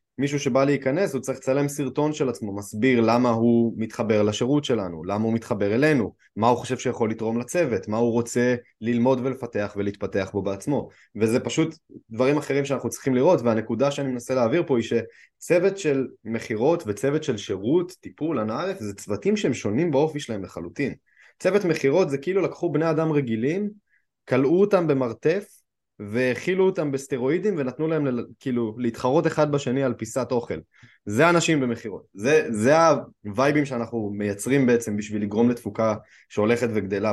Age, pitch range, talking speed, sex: 20-39, 115-155 Hz, 160 wpm, male